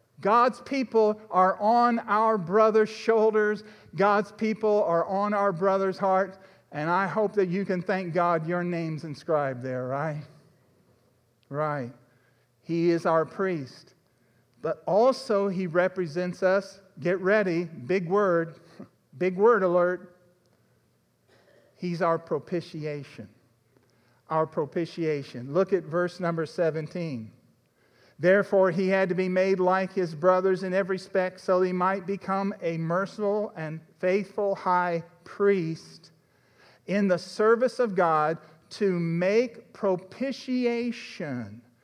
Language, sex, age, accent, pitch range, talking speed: English, male, 50-69, American, 155-200 Hz, 120 wpm